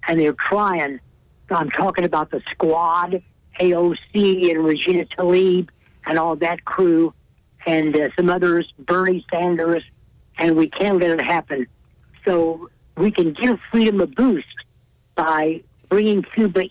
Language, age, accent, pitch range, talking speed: English, 60-79, American, 160-185 Hz, 135 wpm